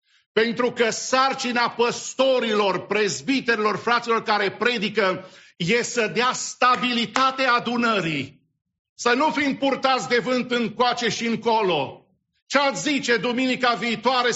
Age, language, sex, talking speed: 50-69, English, male, 115 wpm